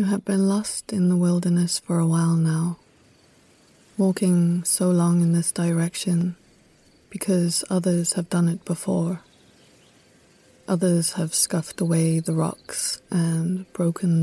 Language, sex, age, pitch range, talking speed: English, female, 20-39, 160-185 Hz, 130 wpm